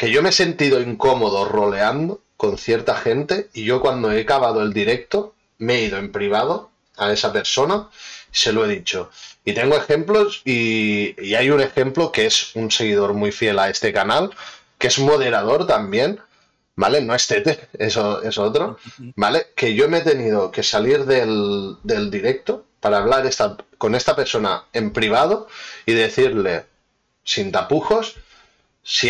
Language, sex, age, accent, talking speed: Spanish, male, 30-49, Spanish, 165 wpm